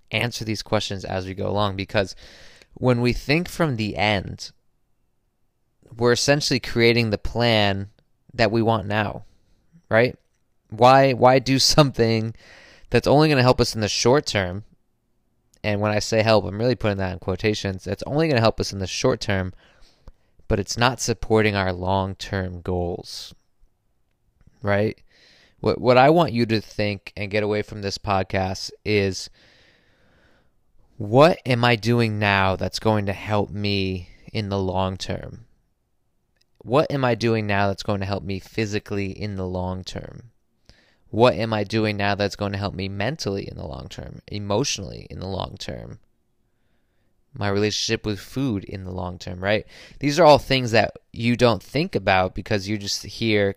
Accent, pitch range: American, 100-120 Hz